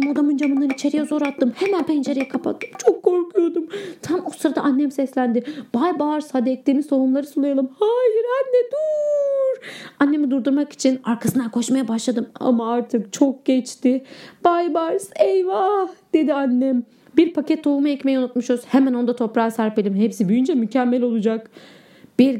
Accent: native